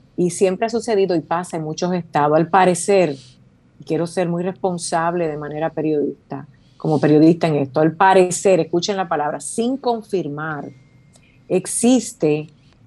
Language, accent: Spanish, American